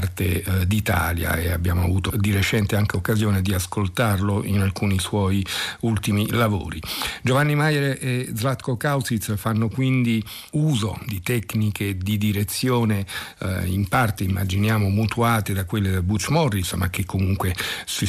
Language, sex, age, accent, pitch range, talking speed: Italian, male, 50-69, native, 95-115 Hz, 135 wpm